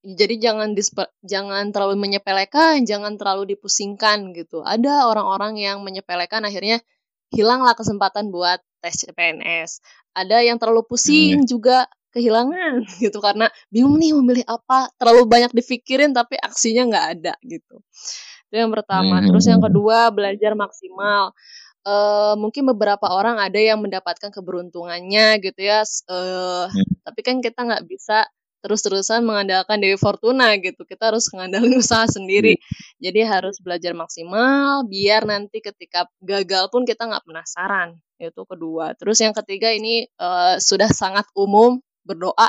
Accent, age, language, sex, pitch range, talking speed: native, 20-39, Indonesian, female, 190-235 Hz, 135 wpm